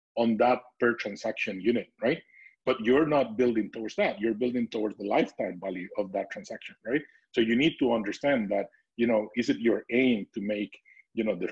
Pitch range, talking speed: 105-125 Hz, 205 wpm